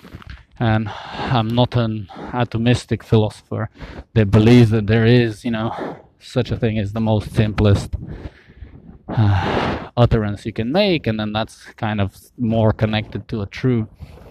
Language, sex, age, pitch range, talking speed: English, male, 20-39, 105-125 Hz, 155 wpm